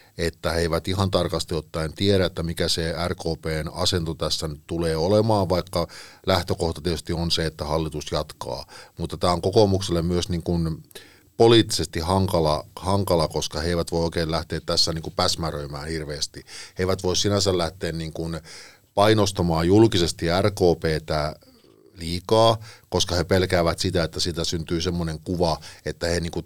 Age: 50-69